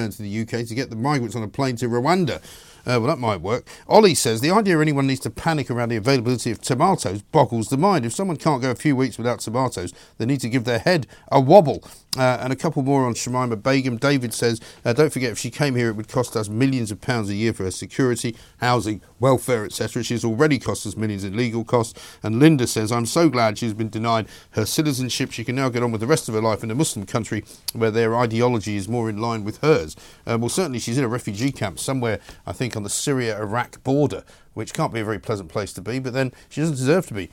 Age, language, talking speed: 50-69, English, 250 wpm